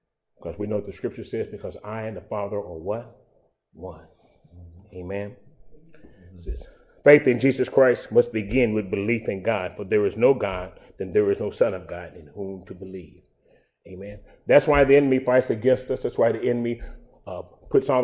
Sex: male